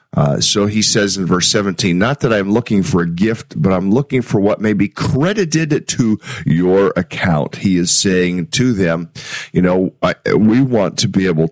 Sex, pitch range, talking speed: male, 90-115 Hz, 200 wpm